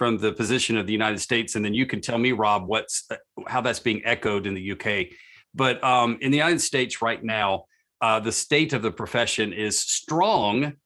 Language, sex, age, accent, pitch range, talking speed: English, male, 40-59, American, 110-125 Hz, 210 wpm